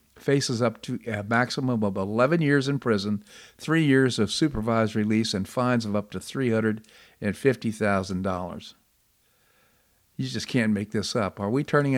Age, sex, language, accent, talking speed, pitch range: 50-69, male, English, American, 150 wpm, 105-135 Hz